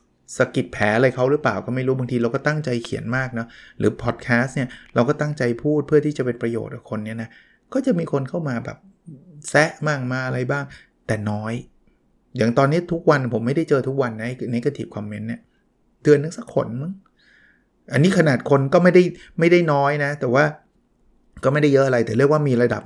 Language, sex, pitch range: Thai, male, 115-150 Hz